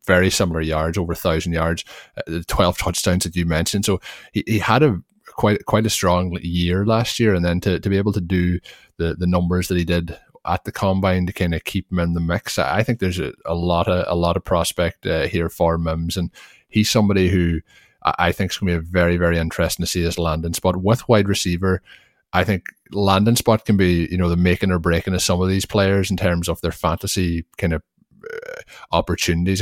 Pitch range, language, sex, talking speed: 85-95 Hz, English, male, 235 wpm